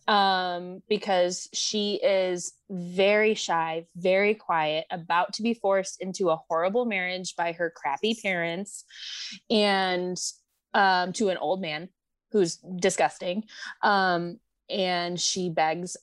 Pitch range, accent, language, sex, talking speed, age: 170-205 Hz, American, English, female, 120 wpm, 20-39